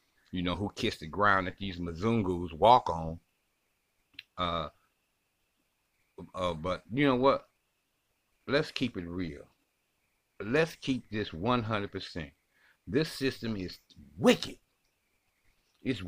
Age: 60-79